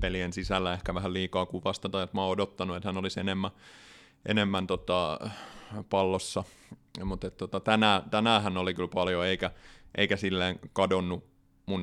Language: Finnish